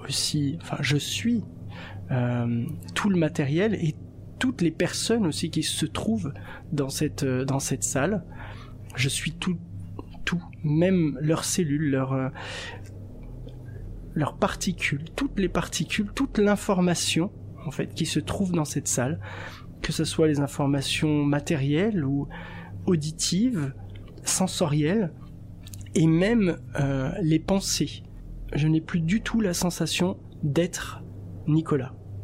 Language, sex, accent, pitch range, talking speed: French, male, French, 105-165 Hz, 130 wpm